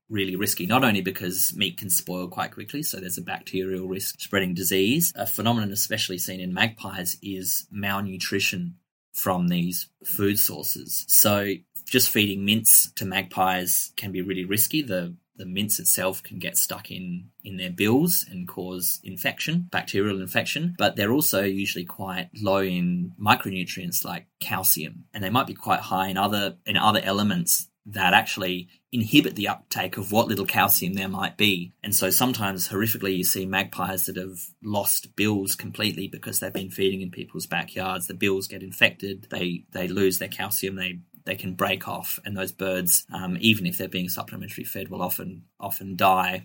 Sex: male